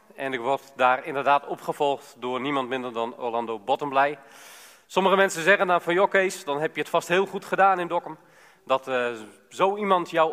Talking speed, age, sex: 200 wpm, 40-59, male